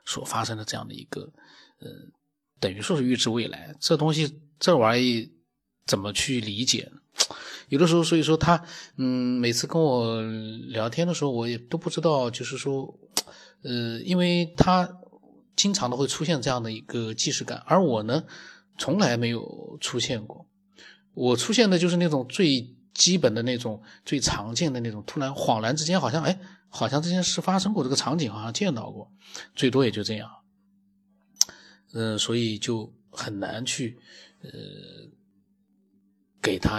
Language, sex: Chinese, male